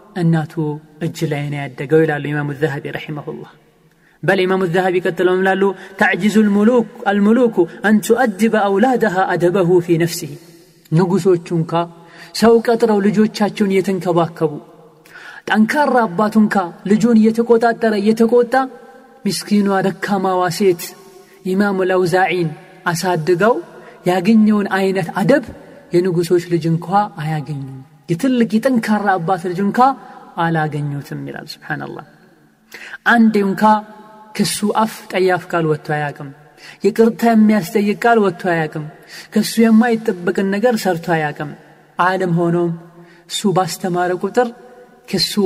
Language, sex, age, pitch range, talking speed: Amharic, male, 30-49, 165-210 Hz, 100 wpm